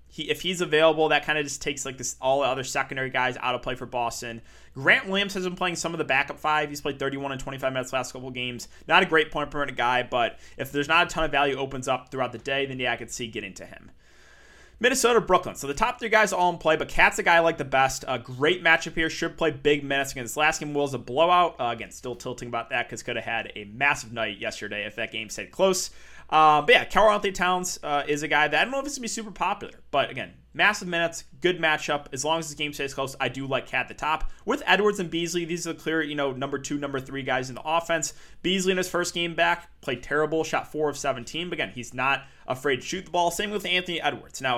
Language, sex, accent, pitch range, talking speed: English, male, American, 130-170 Hz, 275 wpm